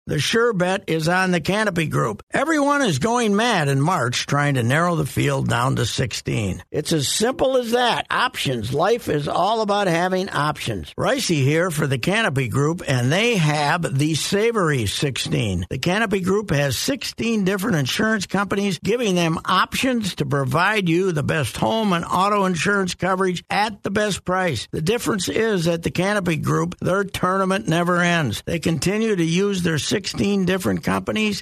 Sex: male